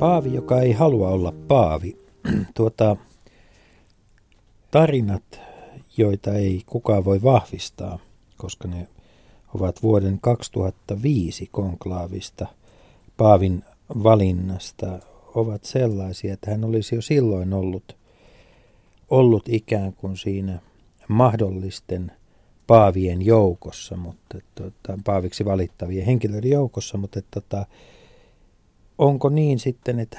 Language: Finnish